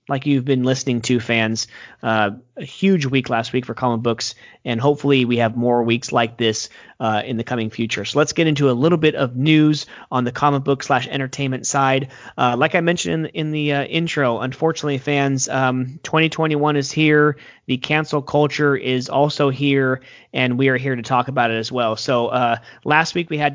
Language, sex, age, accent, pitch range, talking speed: English, male, 30-49, American, 125-150 Hz, 205 wpm